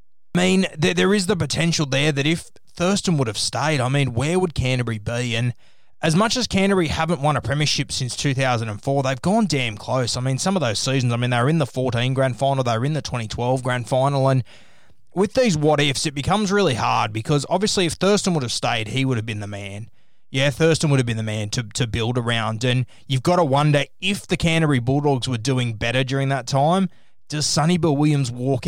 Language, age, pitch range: English, 20-39, 125-160 Hz